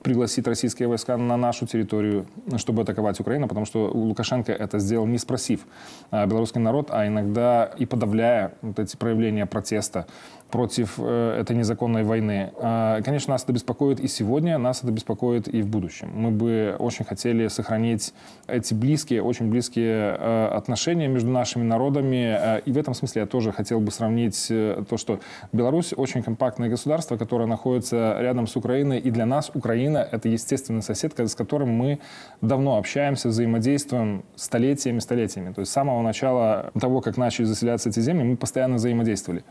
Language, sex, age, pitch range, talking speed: Russian, male, 20-39, 110-130 Hz, 160 wpm